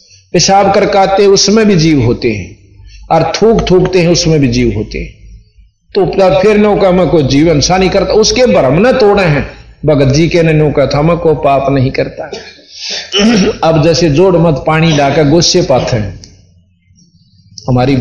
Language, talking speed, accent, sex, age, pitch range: Hindi, 155 wpm, native, male, 50-69, 140-190 Hz